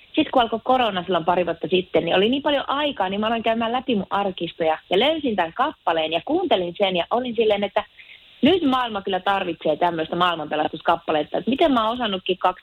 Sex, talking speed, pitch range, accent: female, 195 wpm, 175-235 Hz, native